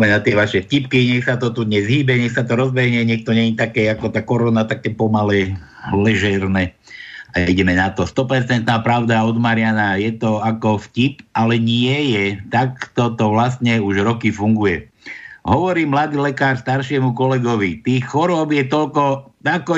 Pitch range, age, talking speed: 115-150 Hz, 60-79, 165 wpm